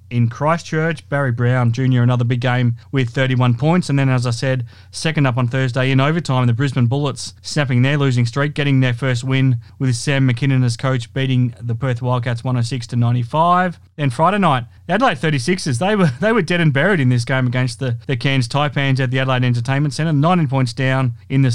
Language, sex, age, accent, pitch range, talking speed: English, male, 20-39, Australian, 125-150 Hz, 210 wpm